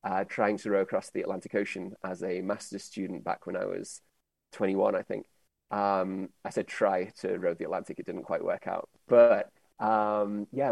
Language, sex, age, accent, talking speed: English, male, 30-49, British, 195 wpm